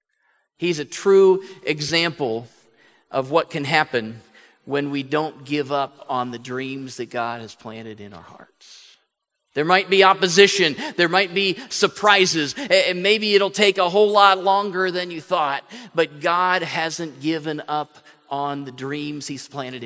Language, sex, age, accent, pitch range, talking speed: English, male, 40-59, American, 125-170 Hz, 155 wpm